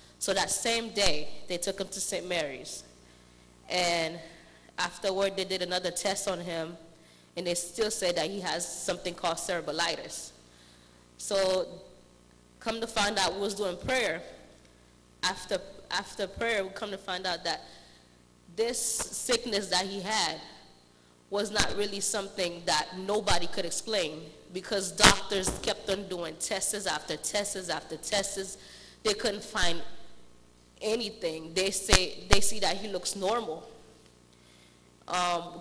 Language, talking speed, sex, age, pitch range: English, 140 wpm, female, 20-39, 160-200 Hz